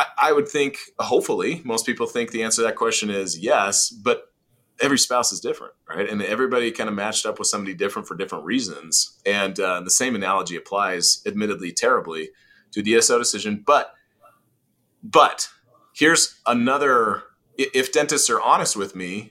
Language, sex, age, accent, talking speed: English, male, 30-49, American, 165 wpm